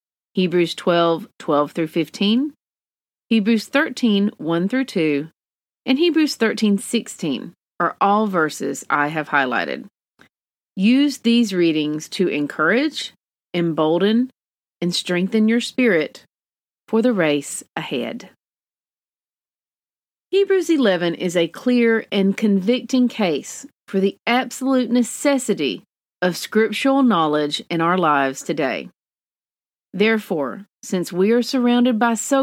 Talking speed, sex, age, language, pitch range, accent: 100 wpm, female, 40-59, English, 170-235 Hz, American